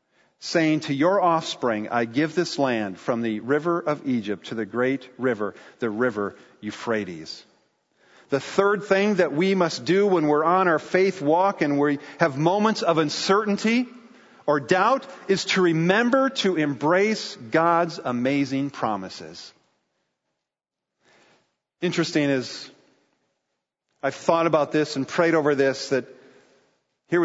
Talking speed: 135 wpm